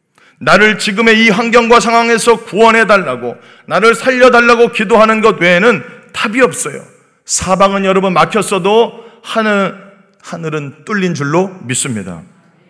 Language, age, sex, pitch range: Korean, 40-59, male, 170-230 Hz